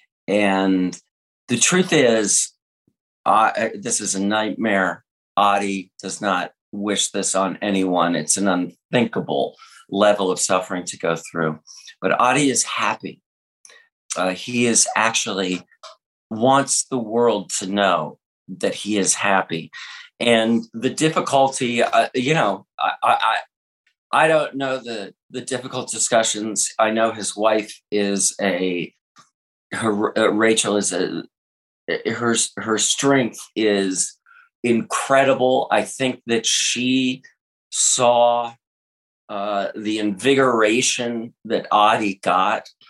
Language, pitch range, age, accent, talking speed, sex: English, 95-120 Hz, 40-59, American, 115 wpm, male